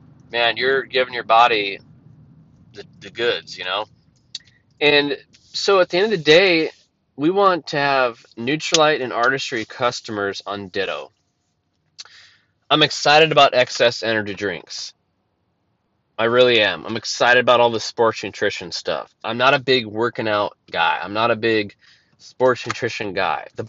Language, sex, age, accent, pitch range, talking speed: English, male, 20-39, American, 110-145 Hz, 150 wpm